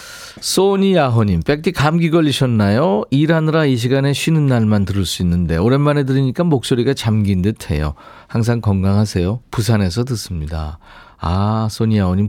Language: Korean